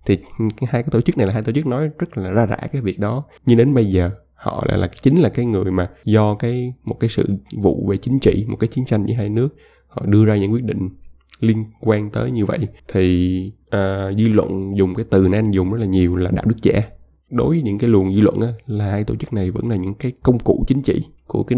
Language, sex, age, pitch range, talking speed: Vietnamese, male, 20-39, 95-120 Hz, 270 wpm